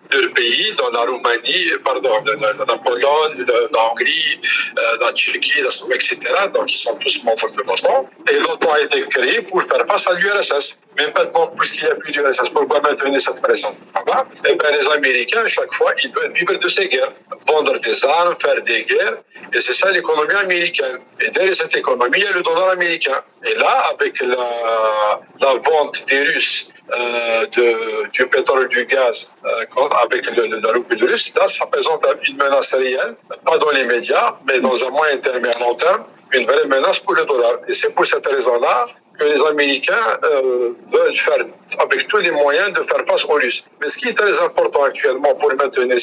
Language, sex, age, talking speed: French, male, 50-69, 205 wpm